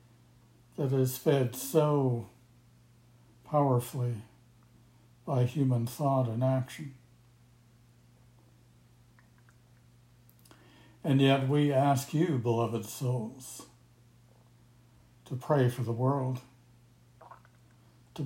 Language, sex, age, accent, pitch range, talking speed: English, male, 60-79, American, 120-130 Hz, 75 wpm